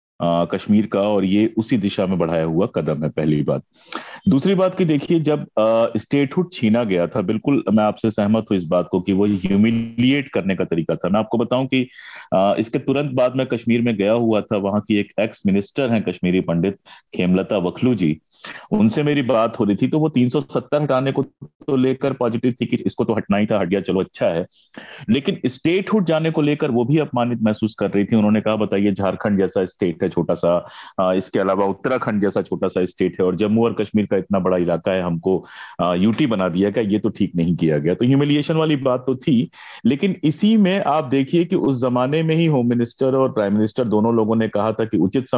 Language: Hindi